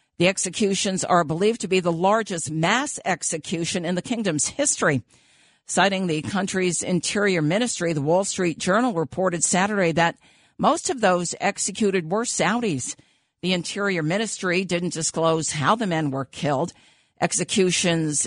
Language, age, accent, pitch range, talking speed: English, 50-69, American, 160-215 Hz, 140 wpm